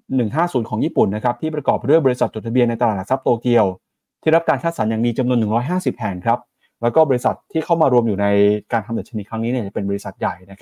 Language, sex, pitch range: Thai, male, 105-135 Hz